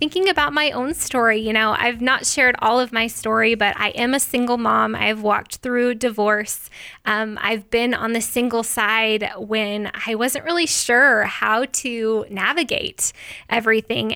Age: 20-39